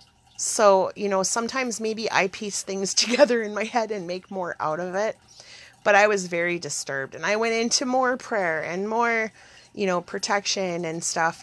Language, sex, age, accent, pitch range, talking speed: English, female, 30-49, American, 165-225 Hz, 190 wpm